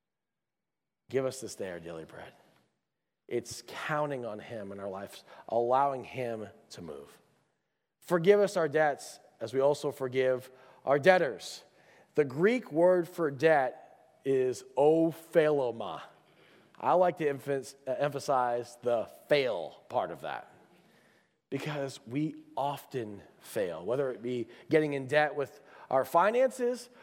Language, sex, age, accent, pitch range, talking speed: English, male, 30-49, American, 130-170 Hz, 125 wpm